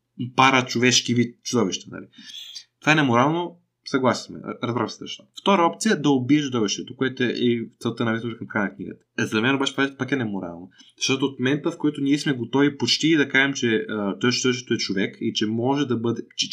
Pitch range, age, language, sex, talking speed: 115-145 Hz, 20-39, Bulgarian, male, 200 wpm